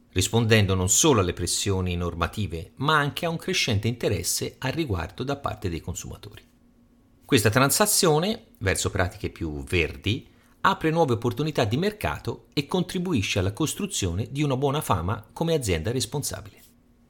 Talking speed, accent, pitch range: 140 wpm, native, 90-130 Hz